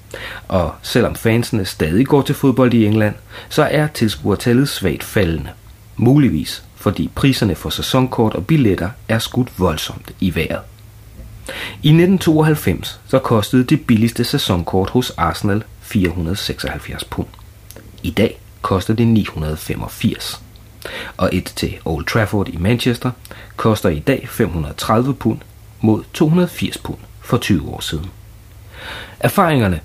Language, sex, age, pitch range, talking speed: Danish, male, 30-49, 95-125 Hz, 125 wpm